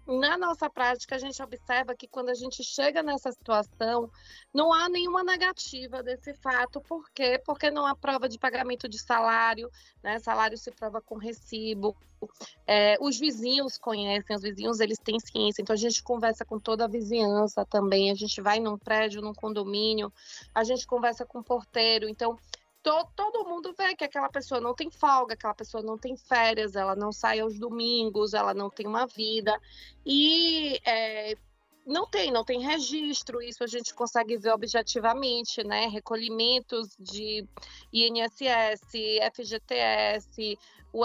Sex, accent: female, Brazilian